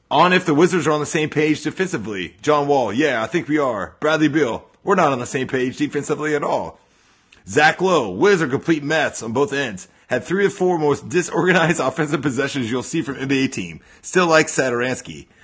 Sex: male